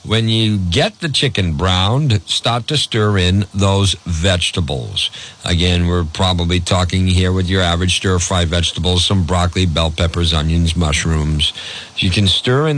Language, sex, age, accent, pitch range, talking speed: English, male, 50-69, American, 90-110 Hz, 150 wpm